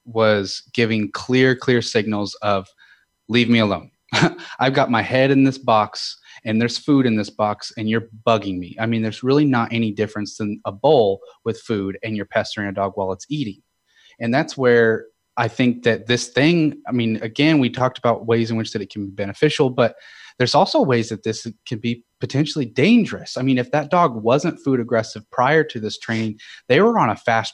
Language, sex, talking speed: English, male, 205 wpm